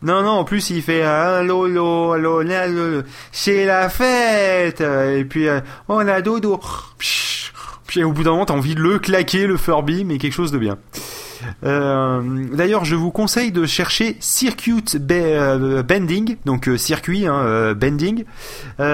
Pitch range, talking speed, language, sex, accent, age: 140-200 Hz, 155 wpm, French, male, French, 30-49